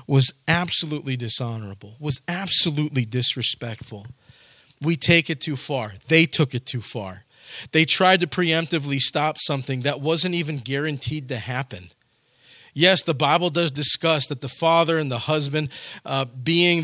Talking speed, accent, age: 145 wpm, American, 40-59